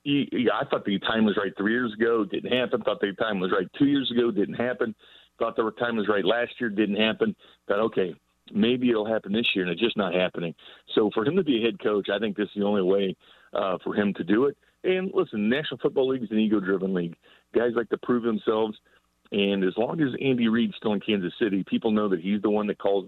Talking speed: 255 wpm